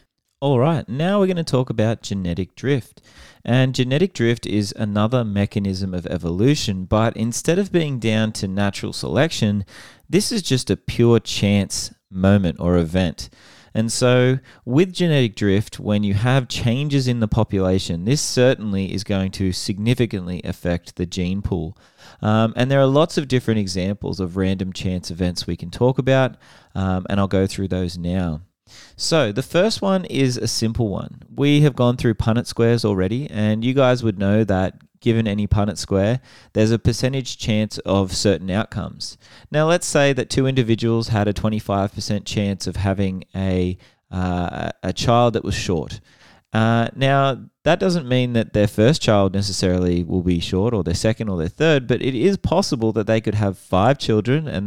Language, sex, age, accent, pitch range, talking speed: English, male, 30-49, Australian, 95-125 Hz, 175 wpm